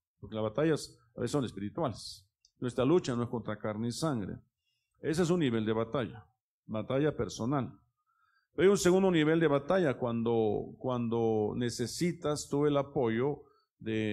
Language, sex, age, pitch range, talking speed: Spanish, male, 50-69, 110-140 Hz, 155 wpm